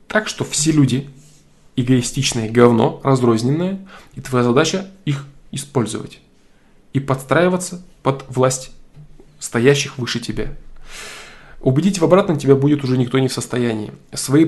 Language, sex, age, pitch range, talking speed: Russian, male, 20-39, 125-160 Hz, 120 wpm